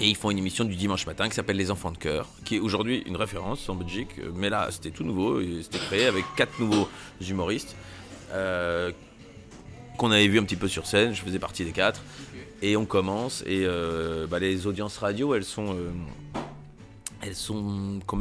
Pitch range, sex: 90-115 Hz, male